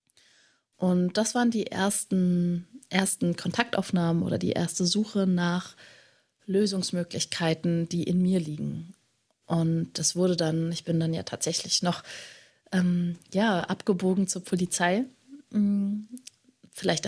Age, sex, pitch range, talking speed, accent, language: 30-49, female, 170-195 Hz, 115 wpm, German, German